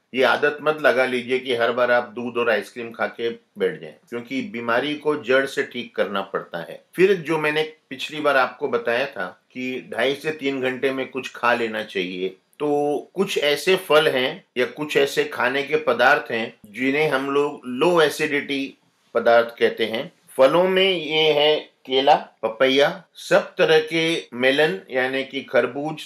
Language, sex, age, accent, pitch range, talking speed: Hindi, male, 50-69, native, 125-160 Hz, 175 wpm